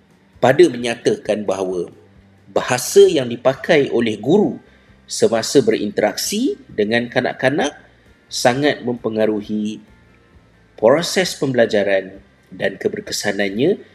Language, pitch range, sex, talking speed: Malay, 105-145 Hz, male, 75 wpm